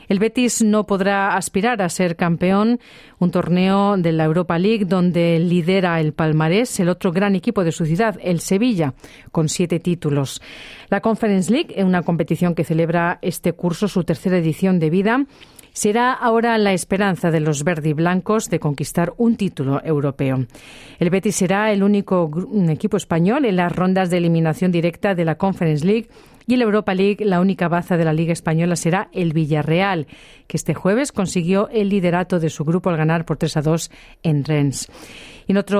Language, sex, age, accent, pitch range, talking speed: Spanish, female, 40-59, Spanish, 165-200 Hz, 180 wpm